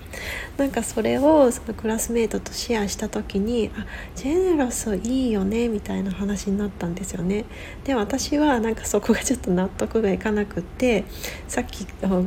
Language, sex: Japanese, female